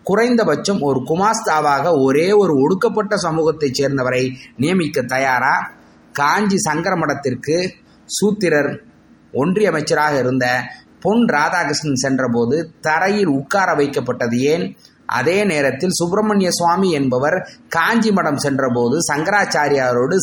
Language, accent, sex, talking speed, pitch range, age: Tamil, native, male, 90 wpm, 135-190 Hz, 30-49